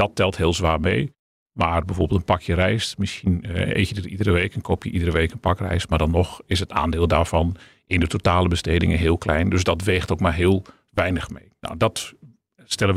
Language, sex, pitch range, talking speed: Dutch, male, 85-100 Hz, 220 wpm